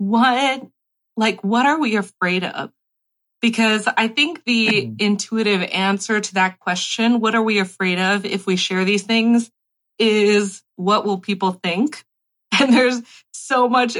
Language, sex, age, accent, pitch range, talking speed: English, female, 30-49, American, 185-230 Hz, 150 wpm